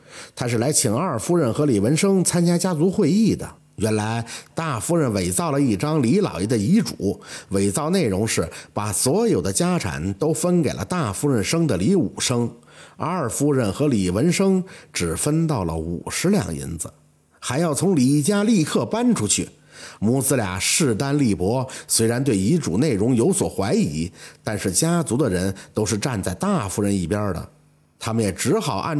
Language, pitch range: Chinese, 100-165 Hz